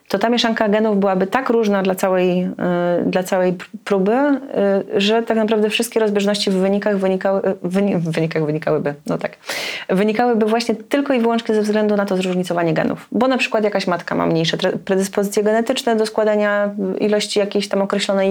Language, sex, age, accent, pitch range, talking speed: Polish, female, 30-49, native, 185-220 Hz, 175 wpm